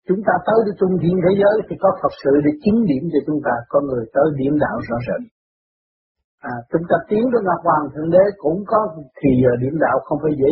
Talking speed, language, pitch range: 235 wpm, Vietnamese, 155-210 Hz